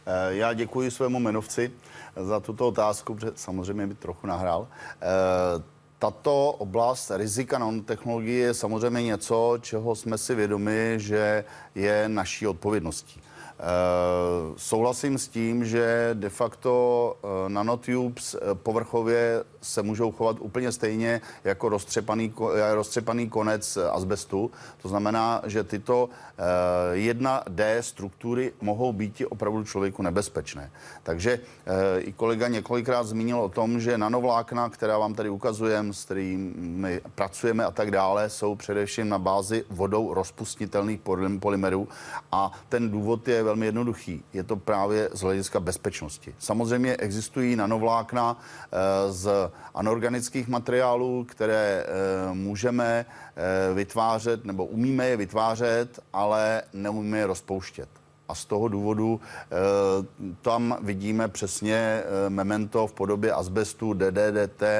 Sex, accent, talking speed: male, native, 115 wpm